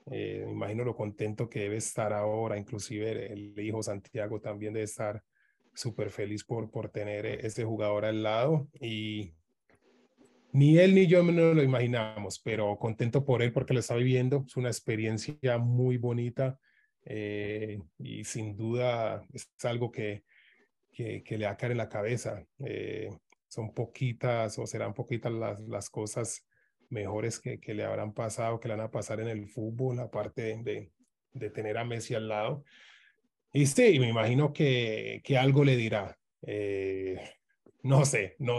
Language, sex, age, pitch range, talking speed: Spanish, male, 30-49, 110-130 Hz, 170 wpm